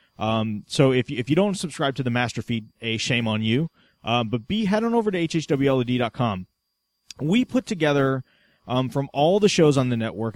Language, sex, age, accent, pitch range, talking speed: English, male, 30-49, American, 115-145 Hz, 225 wpm